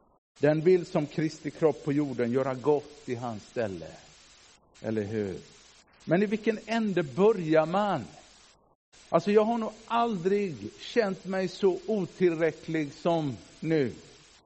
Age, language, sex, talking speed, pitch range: 50-69, Swedish, male, 130 wpm, 150-190 Hz